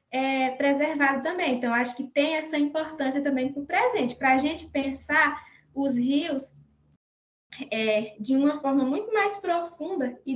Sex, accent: female, Brazilian